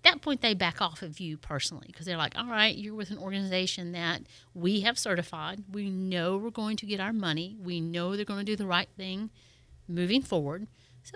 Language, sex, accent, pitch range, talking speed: English, female, American, 165-210 Hz, 220 wpm